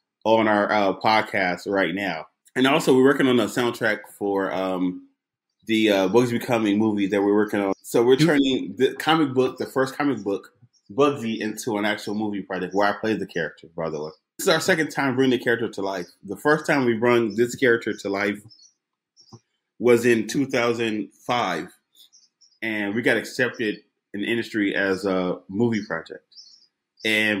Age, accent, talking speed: 20-39, American, 180 wpm